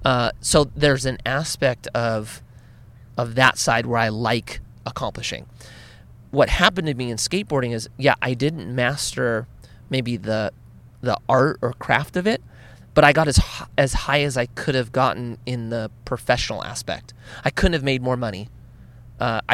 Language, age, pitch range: English, 30-49, 115-135 Hz